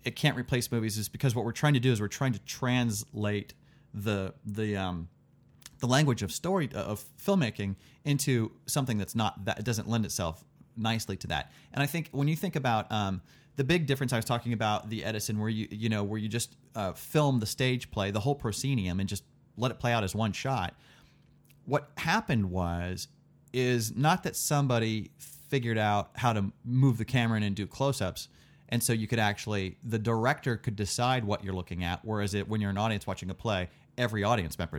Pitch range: 105-130 Hz